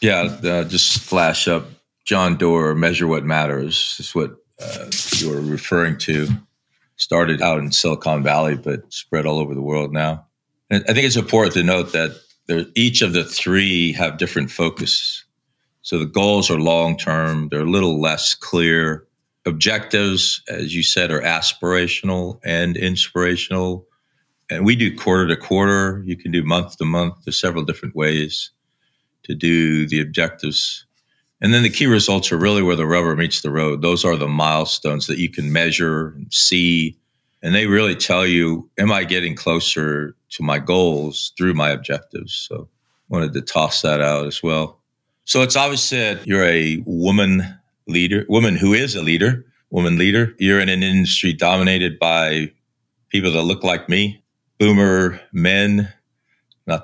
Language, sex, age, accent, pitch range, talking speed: English, male, 50-69, American, 80-95 Hz, 165 wpm